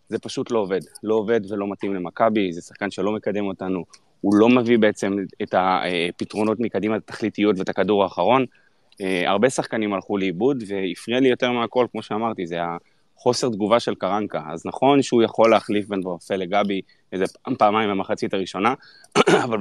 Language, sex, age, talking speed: Hebrew, male, 20-39, 165 wpm